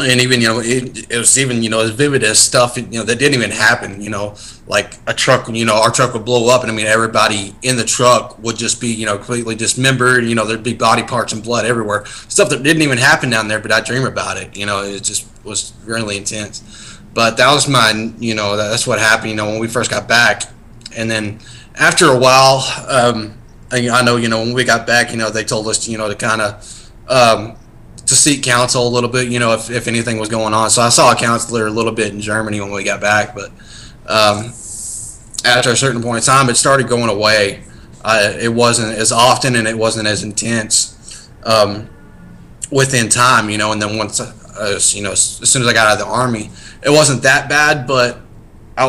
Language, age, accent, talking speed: English, 20-39, American, 235 wpm